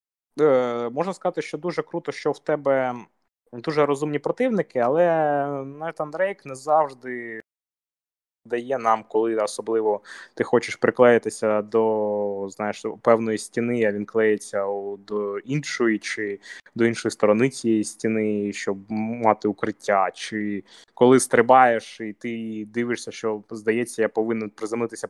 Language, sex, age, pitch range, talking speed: Ukrainian, male, 20-39, 110-135 Hz, 125 wpm